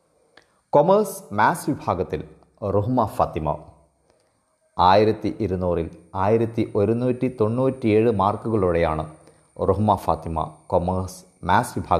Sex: male